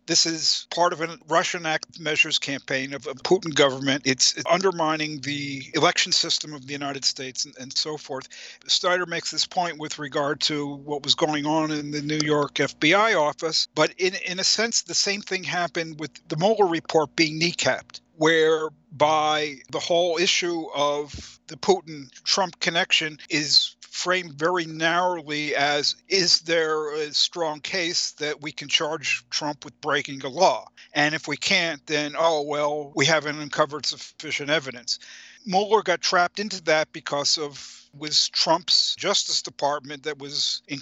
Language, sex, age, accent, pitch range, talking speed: English, male, 50-69, American, 145-170 Hz, 165 wpm